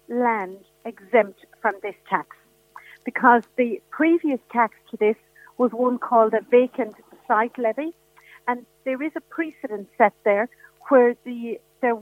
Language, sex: English, female